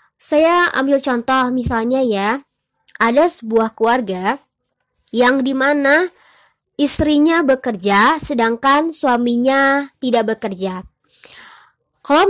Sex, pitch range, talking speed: male, 230-280 Hz, 85 wpm